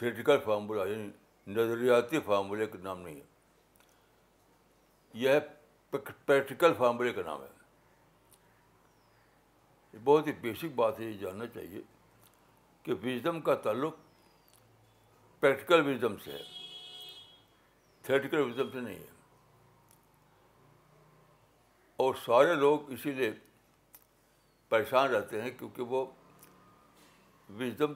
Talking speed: 100 wpm